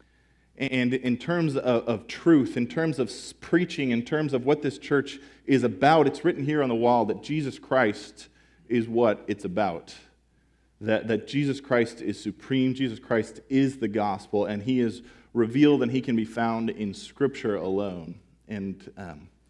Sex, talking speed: male, 170 wpm